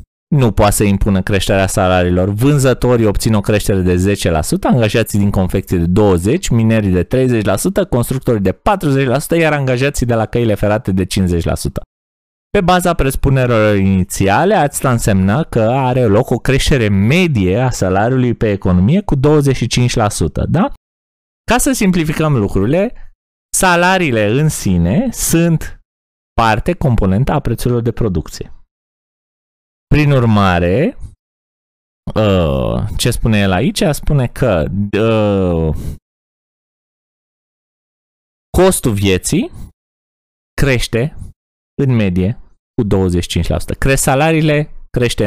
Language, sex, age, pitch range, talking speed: Romanian, male, 20-39, 95-135 Hz, 110 wpm